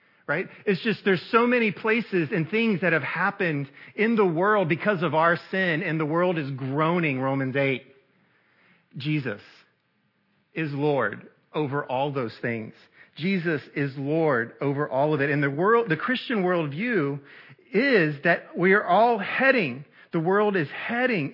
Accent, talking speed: American, 155 wpm